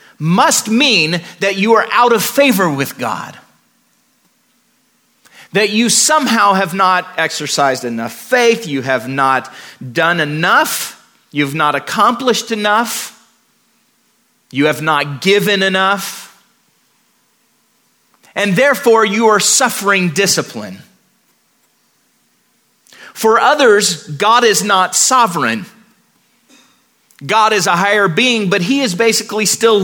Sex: male